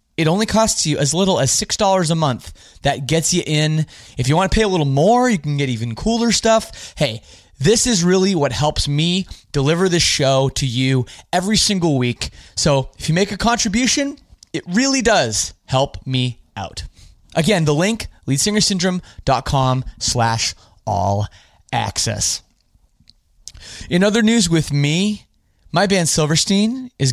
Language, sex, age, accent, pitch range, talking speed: English, male, 30-49, American, 130-185 Hz, 155 wpm